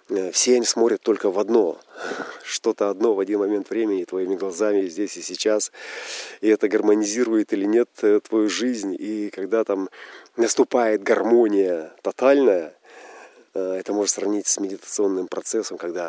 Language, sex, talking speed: Russian, male, 140 wpm